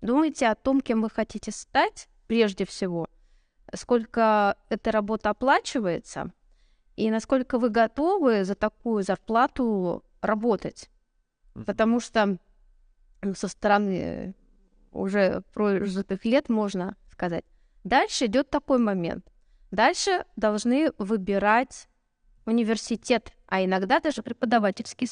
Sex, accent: female, native